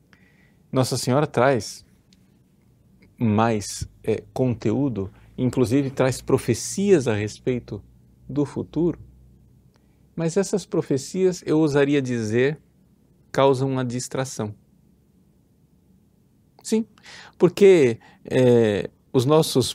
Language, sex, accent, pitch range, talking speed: Portuguese, male, Brazilian, 105-145 Hz, 75 wpm